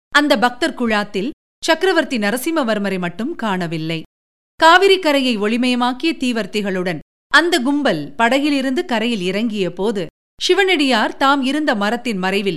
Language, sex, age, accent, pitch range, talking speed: Tamil, female, 50-69, native, 195-285 Hz, 95 wpm